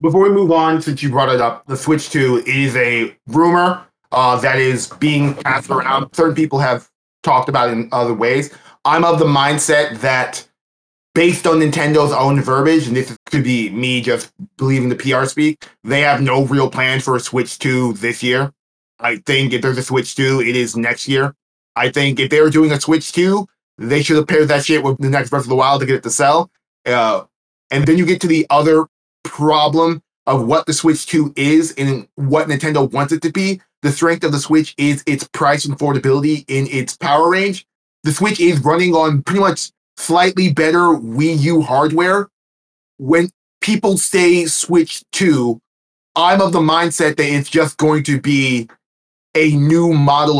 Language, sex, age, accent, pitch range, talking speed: English, male, 20-39, American, 130-160 Hz, 195 wpm